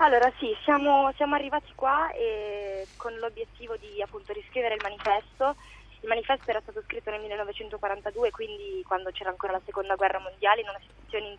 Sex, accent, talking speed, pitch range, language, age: female, native, 175 wpm, 205-255 Hz, Italian, 20-39